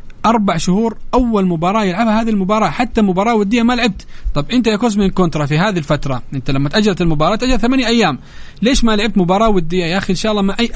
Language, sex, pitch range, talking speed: Arabic, male, 150-215 Hz, 220 wpm